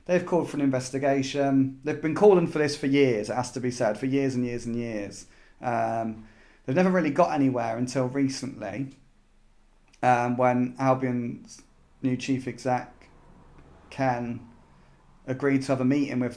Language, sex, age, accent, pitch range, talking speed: English, male, 30-49, British, 120-135 Hz, 160 wpm